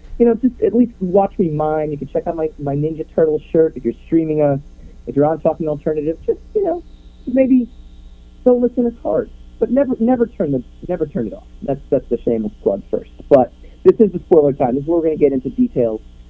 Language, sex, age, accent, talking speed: English, male, 40-59, American, 230 wpm